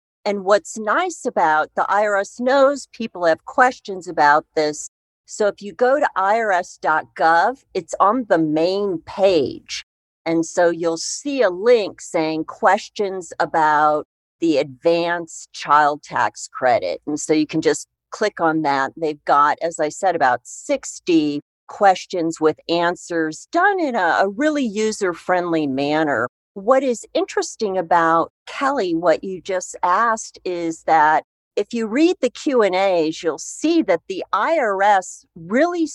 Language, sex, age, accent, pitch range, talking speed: English, female, 50-69, American, 165-230 Hz, 140 wpm